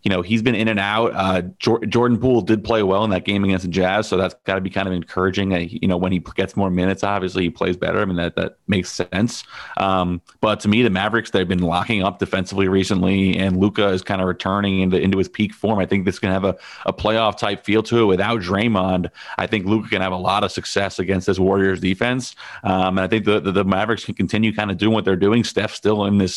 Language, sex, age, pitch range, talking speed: English, male, 30-49, 95-105 Hz, 265 wpm